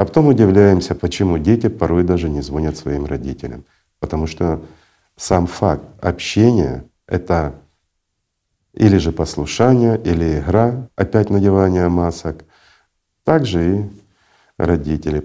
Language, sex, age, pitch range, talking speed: Russian, male, 50-69, 75-105 Hz, 110 wpm